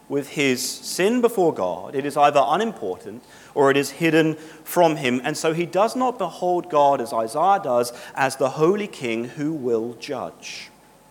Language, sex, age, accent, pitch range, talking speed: English, male, 40-59, British, 135-180 Hz, 175 wpm